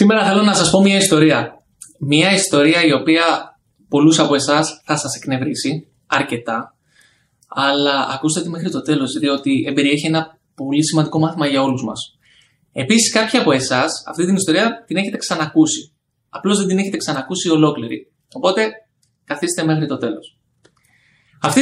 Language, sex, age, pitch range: Greek, male, 20-39, 145-200 Hz